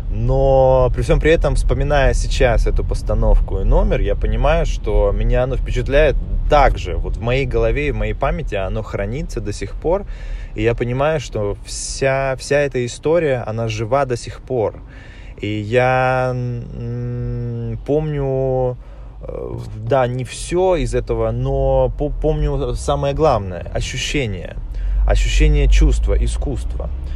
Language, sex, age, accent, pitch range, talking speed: Ukrainian, male, 20-39, native, 110-135 Hz, 135 wpm